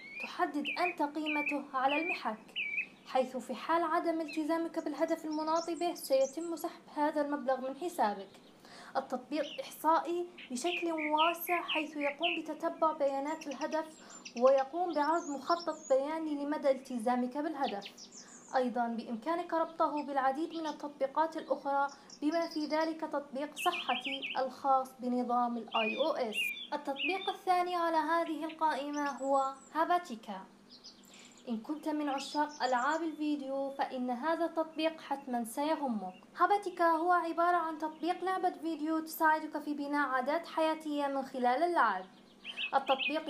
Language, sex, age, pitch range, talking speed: Arabic, female, 20-39, 270-325 Hz, 115 wpm